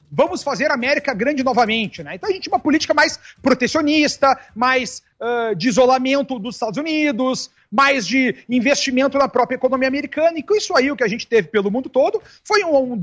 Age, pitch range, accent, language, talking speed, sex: 40-59, 215-275 Hz, Brazilian, Portuguese, 205 wpm, male